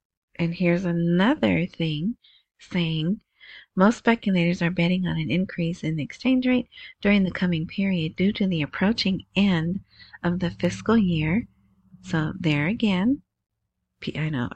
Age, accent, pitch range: 40-59, American, 170-225 Hz